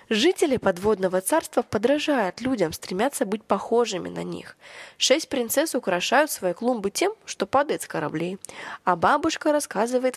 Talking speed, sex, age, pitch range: 135 wpm, female, 20-39, 200-280 Hz